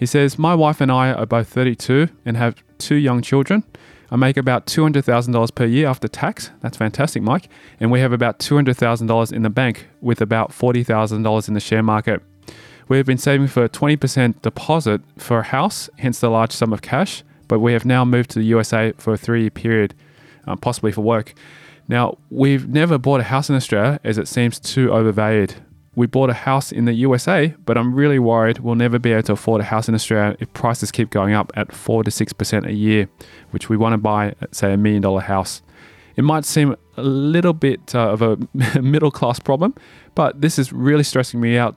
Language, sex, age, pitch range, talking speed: English, male, 20-39, 110-135 Hz, 210 wpm